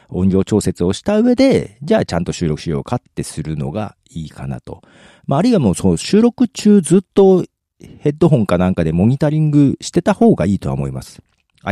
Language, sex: Japanese, male